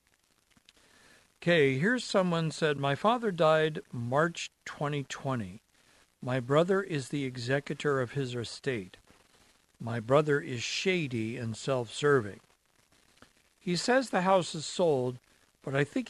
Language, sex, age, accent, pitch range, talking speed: English, male, 60-79, American, 130-160 Hz, 120 wpm